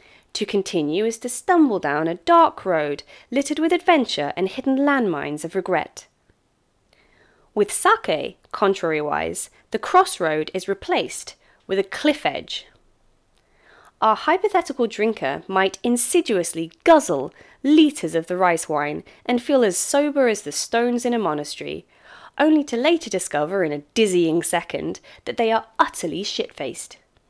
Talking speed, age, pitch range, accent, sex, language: 135 wpm, 20-39, 170-270 Hz, British, female, English